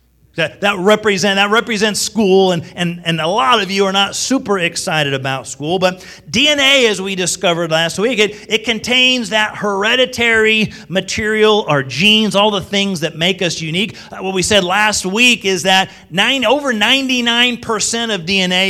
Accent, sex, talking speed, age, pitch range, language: American, male, 170 wpm, 40-59, 170-220 Hz, English